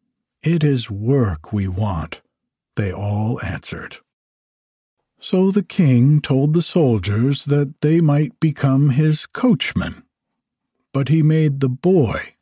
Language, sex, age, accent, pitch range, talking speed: English, male, 60-79, American, 110-155 Hz, 120 wpm